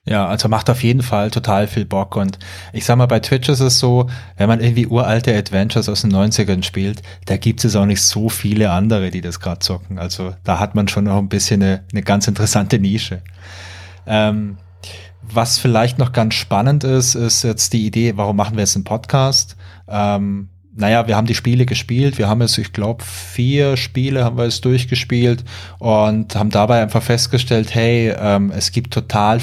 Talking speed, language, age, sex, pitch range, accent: 200 wpm, German, 20-39, male, 100-120 Hz, German